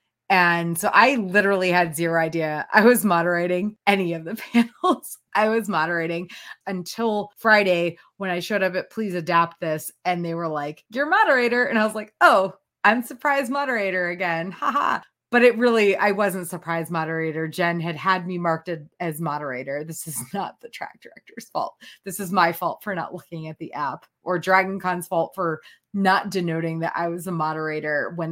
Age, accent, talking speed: 20-39, American, 185 wpm